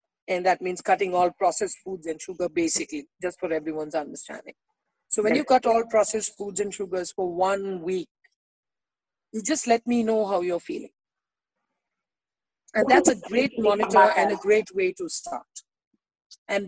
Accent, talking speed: Indian, 165 wpm